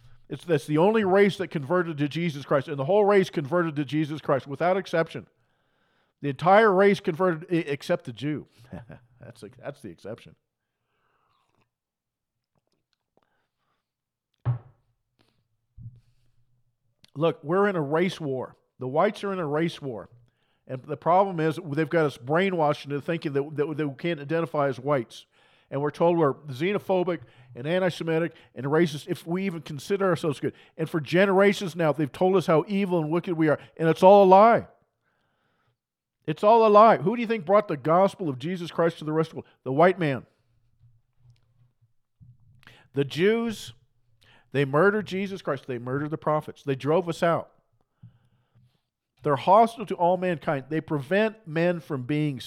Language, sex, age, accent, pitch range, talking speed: English, male, 50-69, American, 130-175 Hz, 165 wpm